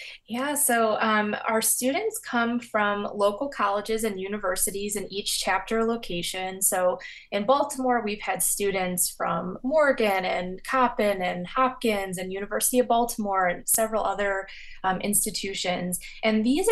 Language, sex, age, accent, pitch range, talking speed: English, female, 20-39, American, 185-230 Hz, 135 wpm